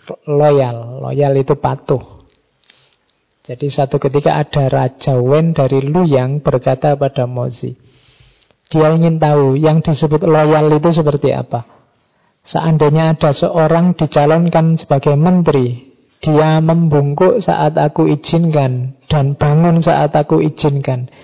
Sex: male